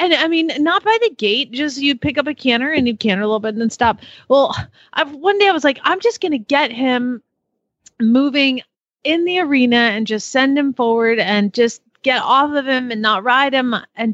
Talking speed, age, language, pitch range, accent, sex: 235 wpm, 30-49, English, 200-250 Hz, American, female